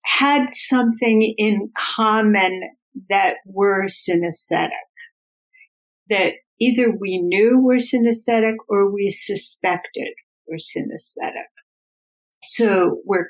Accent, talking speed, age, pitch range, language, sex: American, 90 wpm, 60-79, 170-230 Hz, English, female